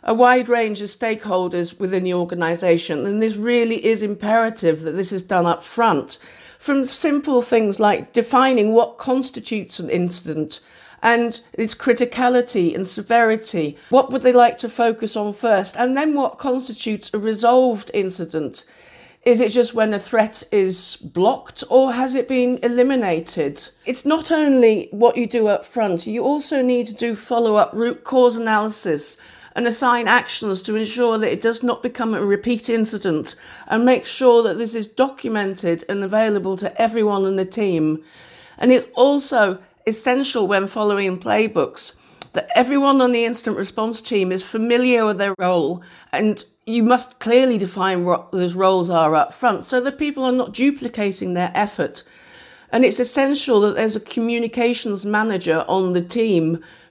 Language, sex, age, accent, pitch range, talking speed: English, female, 50-69, British, 195-245 Hz, 160 wpm